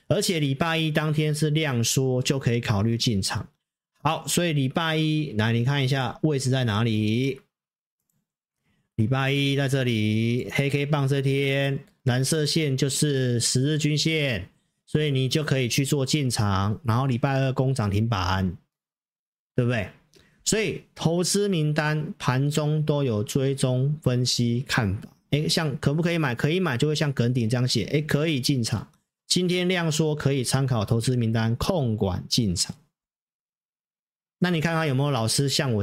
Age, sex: 40-59, male